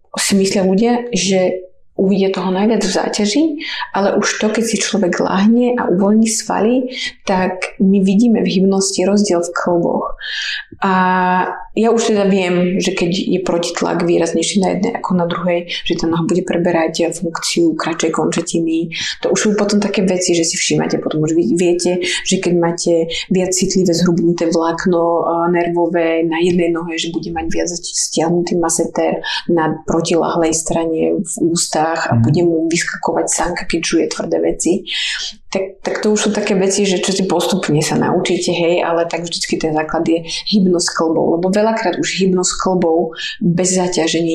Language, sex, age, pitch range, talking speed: Slovak, female, 20-39, 170-195 Hz, 165 wpm